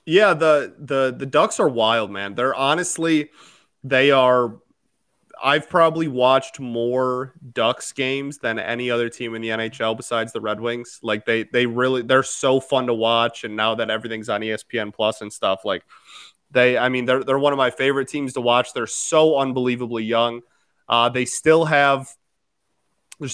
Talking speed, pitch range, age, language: 175 wpm, 115-140 Hz, 20-39, English